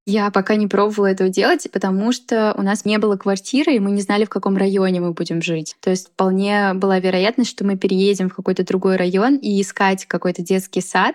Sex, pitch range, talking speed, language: female, 185-220 Hz, 215 wpm, Russian